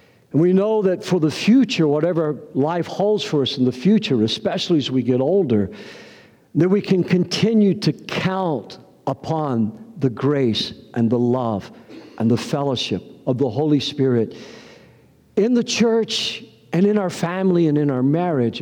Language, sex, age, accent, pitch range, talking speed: English, male, 60-79, American, 140-195 Hz, 160 wpm